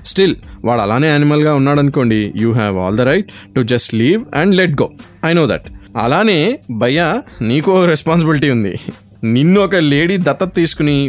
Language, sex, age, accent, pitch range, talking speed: Telugu, male, 20-39, native, 115-145 Hz, 170 wpm